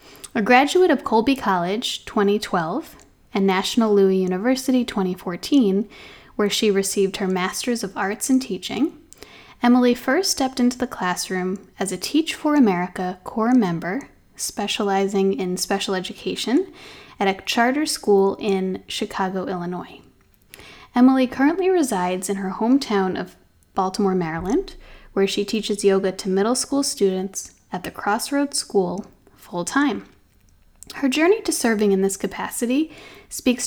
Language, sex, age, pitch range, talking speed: English, female, 10-29, 195-265 Hz, 130 wpm